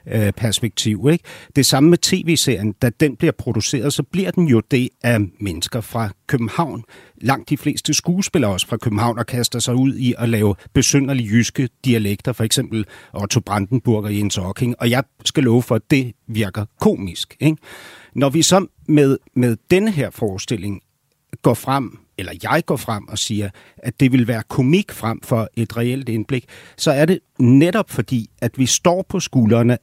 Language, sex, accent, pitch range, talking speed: Danish, male, native, 115-145 Hz, 180 wpm